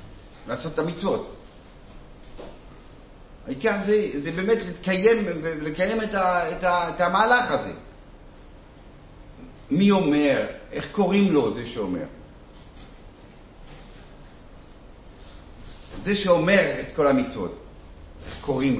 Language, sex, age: Hebrew, male, 50-69